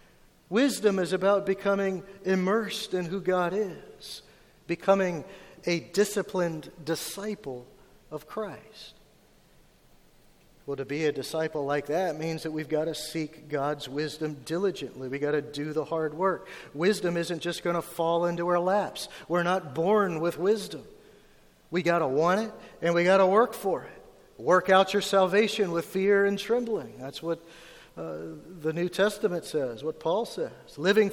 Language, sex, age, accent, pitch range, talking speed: English, male, 50-69, American, 160-205 Hz, 160 wpm